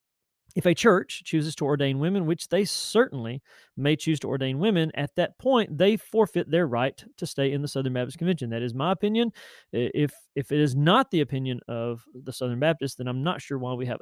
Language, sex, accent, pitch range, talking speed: English, male, American, 130-175 Hz, 220 wpm